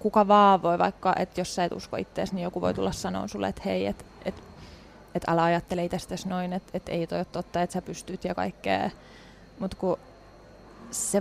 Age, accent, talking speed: 20-39, Finnish, 195 wpm